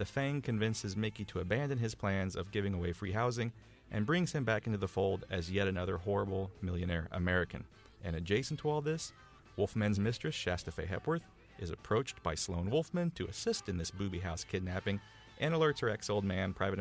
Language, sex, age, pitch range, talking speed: English, male, 40-59, 95-125 Hz, 190 wpm